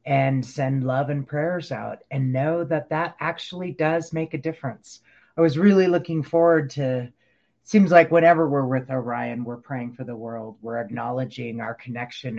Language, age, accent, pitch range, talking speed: English, 30-49, American, 125-170 Hz, 180 wpm